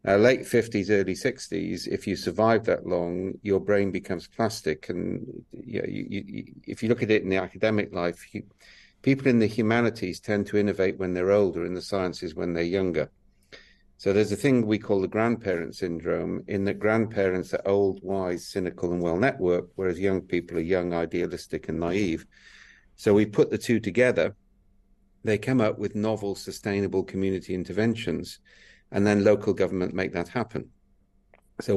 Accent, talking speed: British, 165 wpm